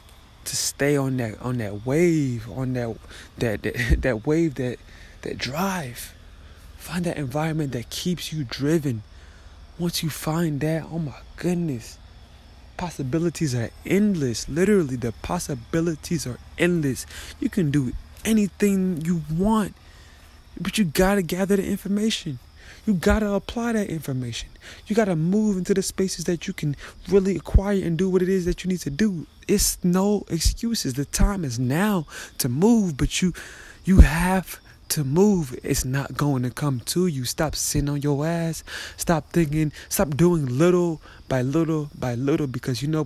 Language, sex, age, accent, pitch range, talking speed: English, male, 20-39, American, 120-180 Hz, 160 wpm